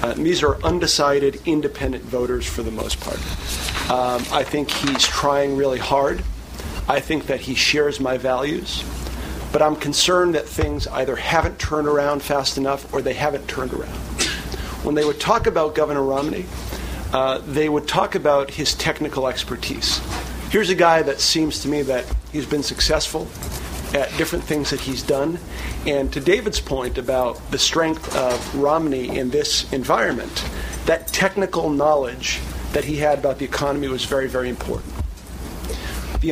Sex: male